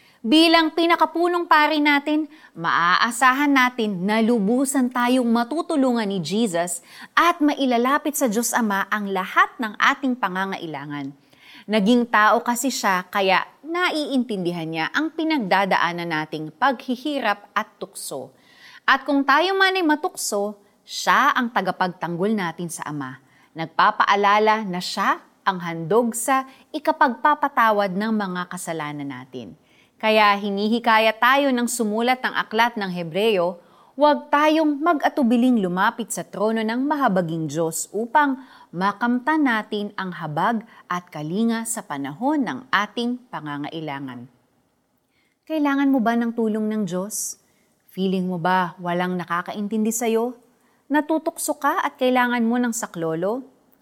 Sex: female